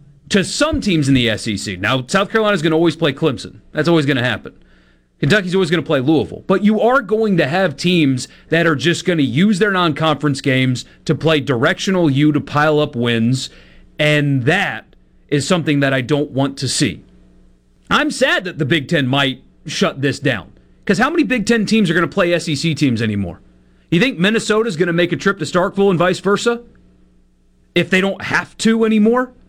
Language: English